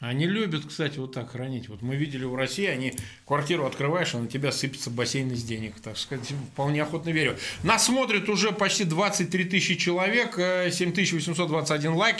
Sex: male